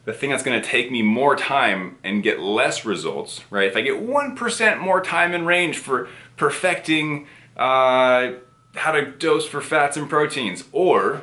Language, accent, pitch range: English, American, 105-150 Hz